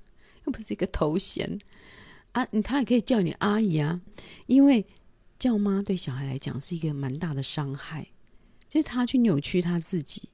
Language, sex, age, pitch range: Chinese, female, 40-59, 150-225 Hz